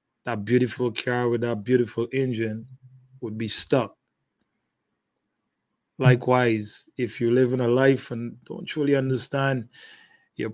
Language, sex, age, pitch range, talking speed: English, male, 20-39, 115-130 Hz, 125 wpm